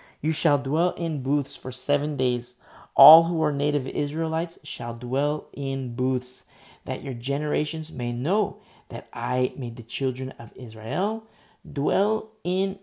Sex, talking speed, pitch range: male, 145 wpm, 115-165 Hz